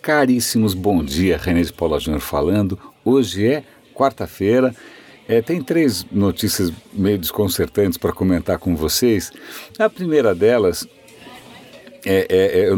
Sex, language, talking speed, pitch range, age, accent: male, Portuguese, 115 wpm, 95-125 Hz, 60-79, Brazilian